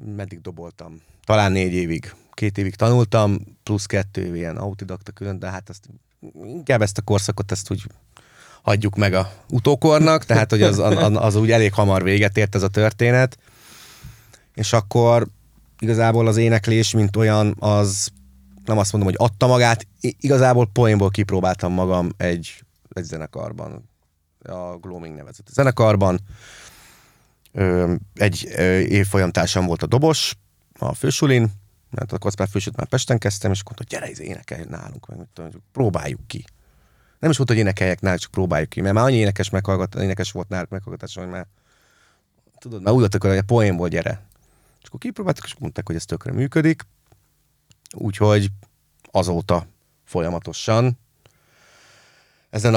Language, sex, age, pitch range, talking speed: Hungarian, male, 30-49, 95-115 Hz, 150 wpm